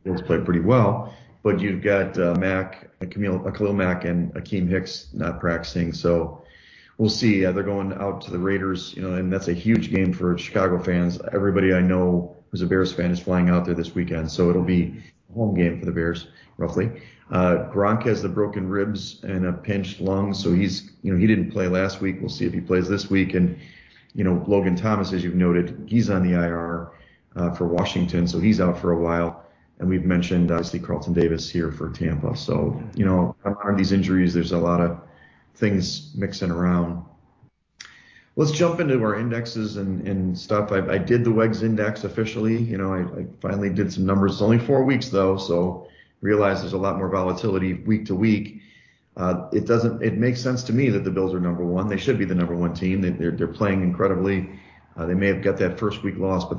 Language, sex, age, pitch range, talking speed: English, male, 30-49, 90-100 Hz, 215 wpm